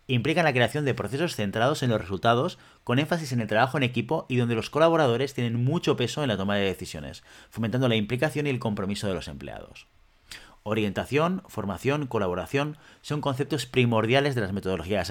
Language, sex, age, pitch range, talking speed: Spanish, male, 40-59, 105-135 Hz, 185 wpm